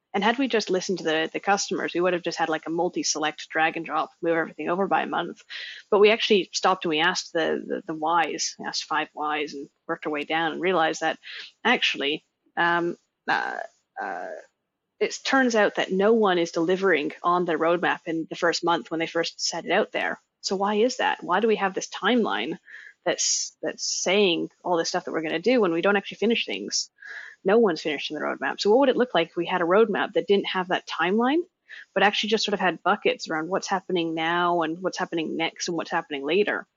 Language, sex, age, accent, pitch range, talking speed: English, female, 30-49, American, 160-200 Hz, 230 wpm